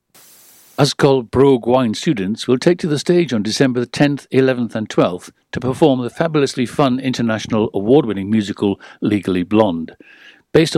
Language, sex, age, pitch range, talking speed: English, male, 60-79, 110-135 Hz, 145 wpm